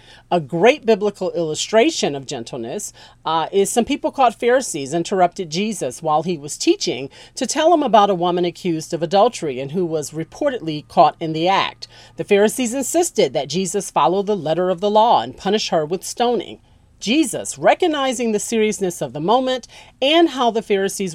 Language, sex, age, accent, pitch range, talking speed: English, female, 40-59, American, 165-240 Hz, 175 wpm